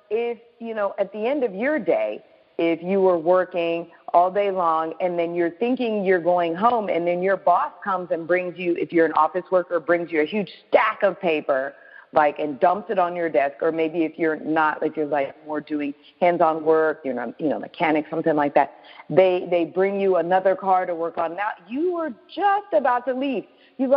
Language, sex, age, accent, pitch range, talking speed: English, female, 50-69, American, 160-205 Hz, 220 wpm